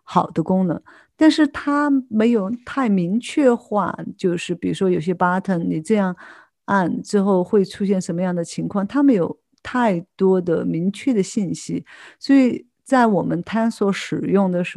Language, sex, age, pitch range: Chinese, female, 50-69, 175-225 Hz